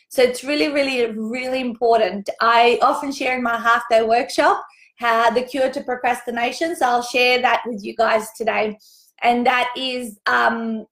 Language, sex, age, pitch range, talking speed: English, female, 30-49, 235-270 Hz, 170 wpm